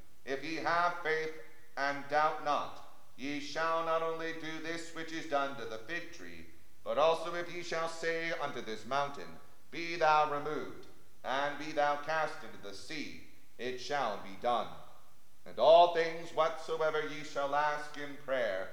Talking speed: 165 wpm